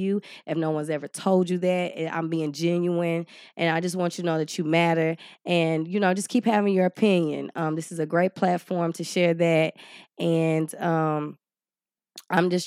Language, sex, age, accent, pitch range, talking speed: English, female, 20-39, American, 160-180 Hz, 200 wpm